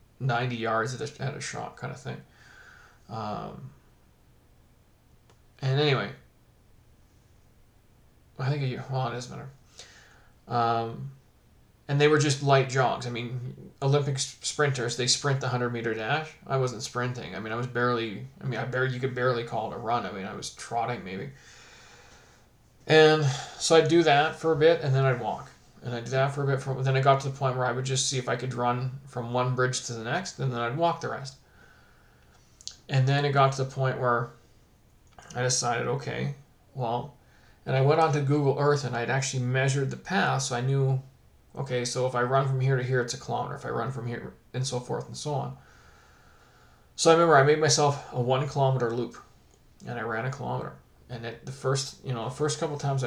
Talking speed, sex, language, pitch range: 205 wpm, male, English, 120-140 Hz